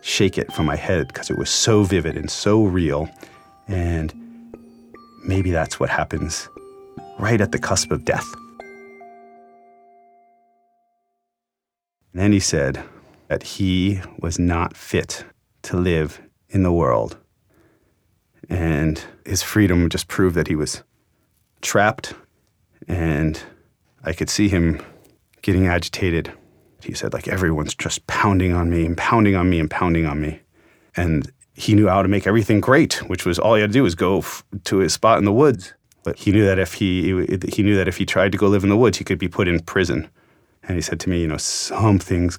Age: 30-49